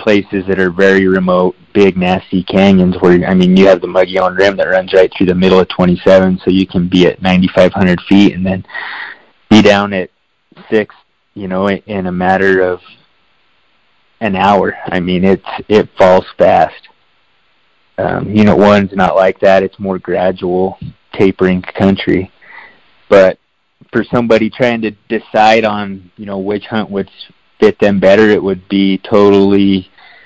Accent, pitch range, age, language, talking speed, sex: American, 90-100 Hz, 20-39, English, 165 wpm, male